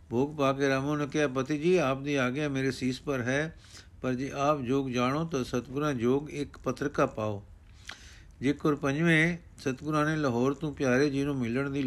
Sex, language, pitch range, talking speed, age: male, Punjabi, 120-150 Hz, 180 wpm, 50-69